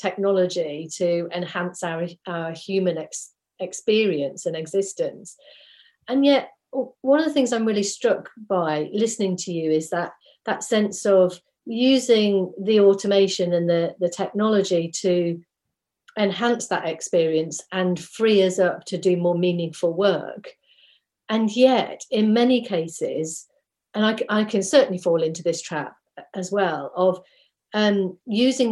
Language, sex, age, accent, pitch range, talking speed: English, female, 40-59, British, 175-225 Hz, 135 wpm